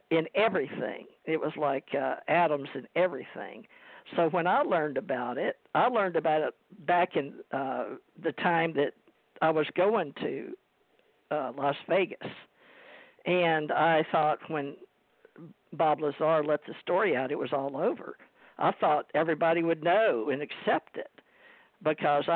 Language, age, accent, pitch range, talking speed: English, 50-69, American, 150-180 Hz, 150 wpm